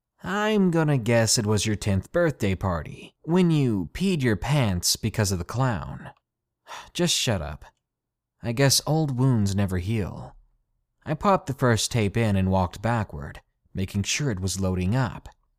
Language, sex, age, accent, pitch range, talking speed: English, male, 20-39, American, 95-140 Hz, 160 wpm